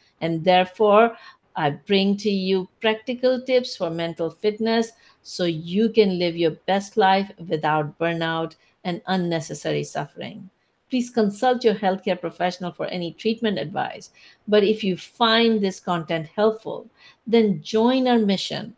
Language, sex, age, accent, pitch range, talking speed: English, female, 60-79, Indian, 175-225 Hz, 135 wpm